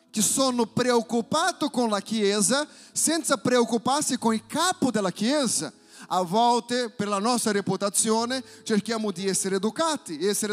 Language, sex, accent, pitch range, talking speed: Italian, male, Brazilian, 210-265 Hz, 130 wpm